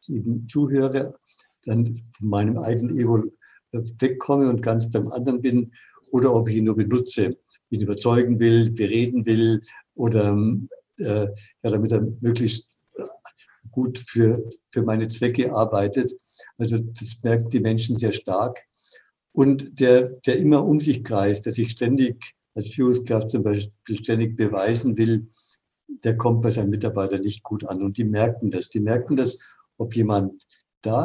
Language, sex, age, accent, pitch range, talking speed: German, male, 60-79, German, 110-125 Hz, 150 wpm